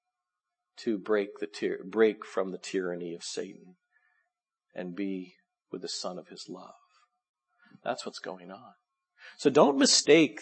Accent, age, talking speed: American, 50-69, 145 wpm